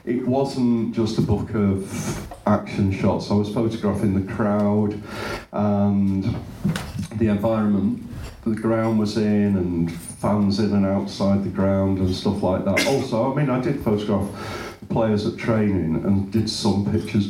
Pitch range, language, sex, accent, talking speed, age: 100-120 Hz, English, male, British, 155 wpm, 50-69